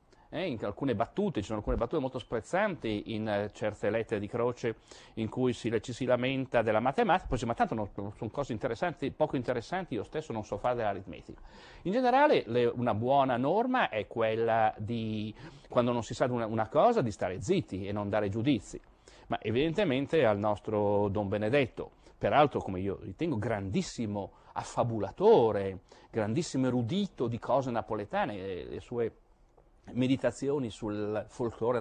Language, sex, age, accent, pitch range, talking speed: Italian, male, 40-59, native, 110-145 Hz, 165 wpm